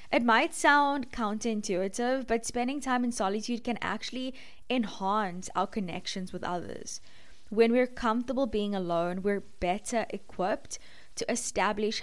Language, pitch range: English, 185-230 Hz